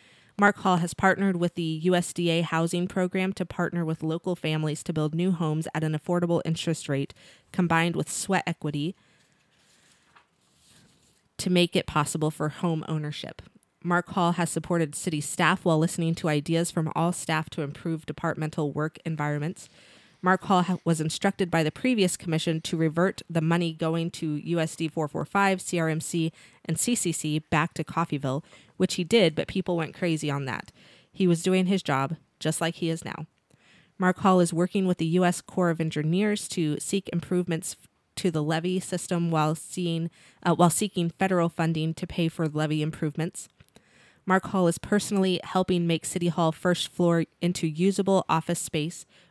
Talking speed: 170 wpm